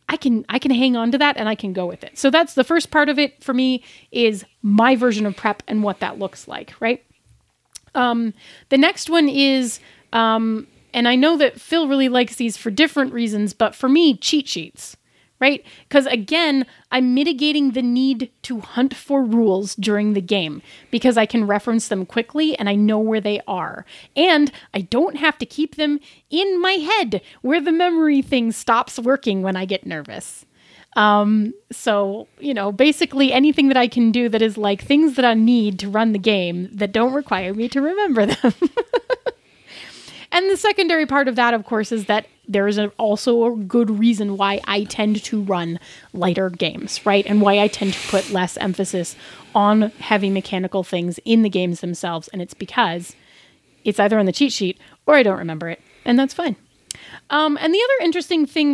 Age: 30-49